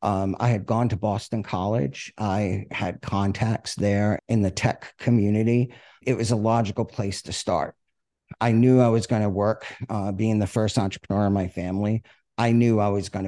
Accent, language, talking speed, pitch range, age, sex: American, English, 190 wpm, 95-115 Hz, 50-69, male